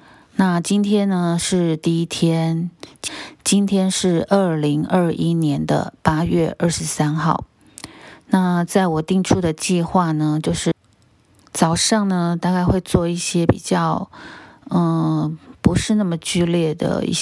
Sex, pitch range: female, 160-185 Hz